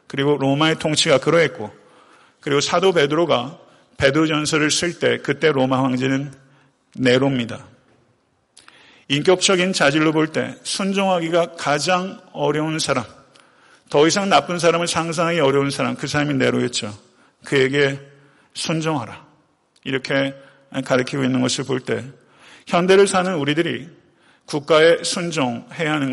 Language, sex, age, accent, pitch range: Korean, male, 40-59, native, 135-170 Hz